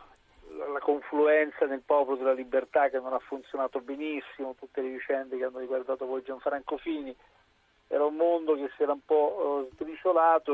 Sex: male